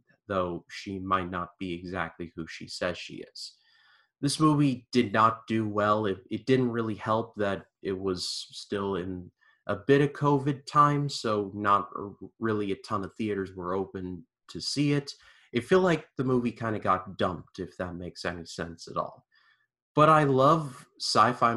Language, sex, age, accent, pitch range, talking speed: English, male, 30-49, American, 95-120 Hz, 180 wpm